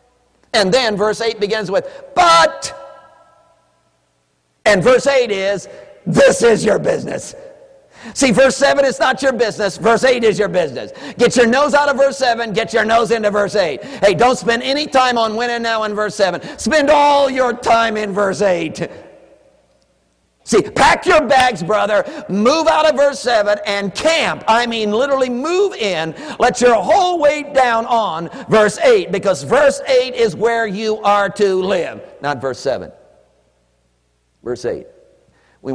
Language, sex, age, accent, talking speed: English, male, 50-69, American, 165 wpm